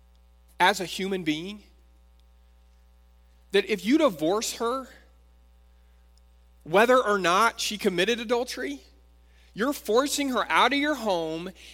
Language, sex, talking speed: English, male, 115 wpm